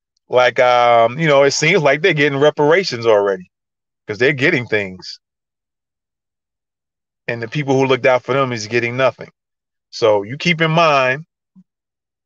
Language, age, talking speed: English, 30-49, 150 wpm